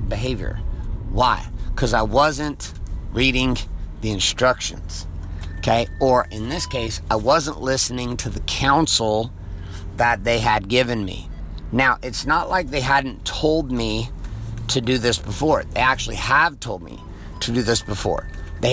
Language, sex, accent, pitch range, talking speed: English, male, American, 105-140 Hz, 145 wpm